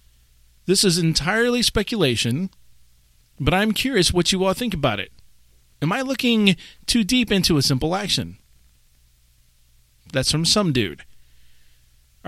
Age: 40-59